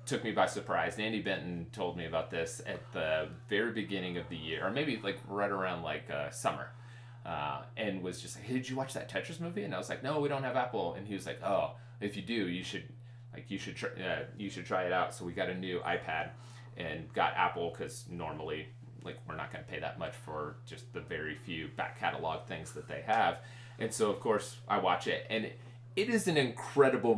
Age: 30-49